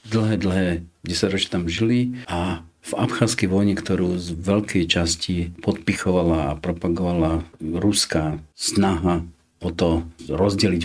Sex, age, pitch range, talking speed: male, 50-69, 85-100 Hz, 115 wpm